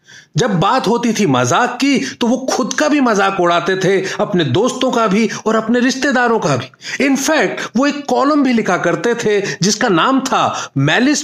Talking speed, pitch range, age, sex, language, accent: 185 wpm, 185-250 Hz, 40-59, male, Hindi, native